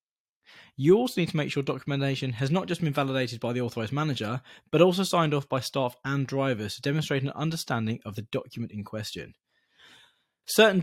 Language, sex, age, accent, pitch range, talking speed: English, male, 20-39, British, 120-150 Hz, 190 wpm